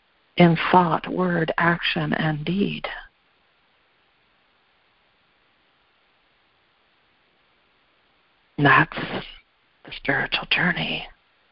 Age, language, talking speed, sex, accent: 50-69, English, 55 wpm, female, American